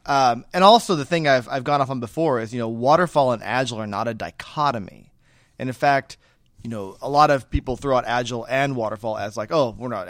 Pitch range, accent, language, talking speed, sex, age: 115-140 Hz, American, English, 240 wpm, male, 30-49